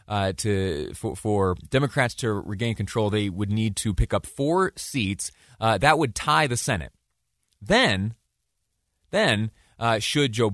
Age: 30-49